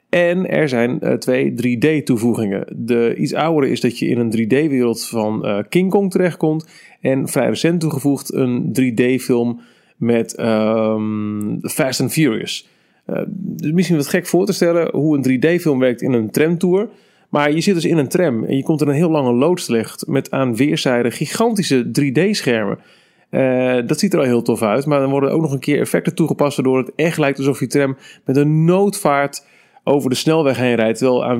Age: 40-59